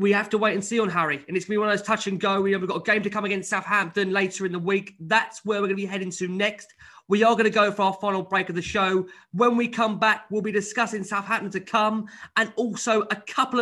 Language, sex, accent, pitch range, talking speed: English, male, British, 195-230 Hz, 290 wpm